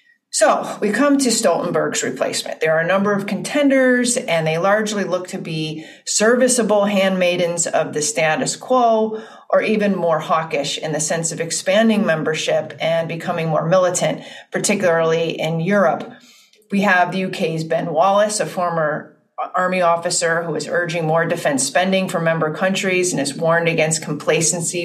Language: English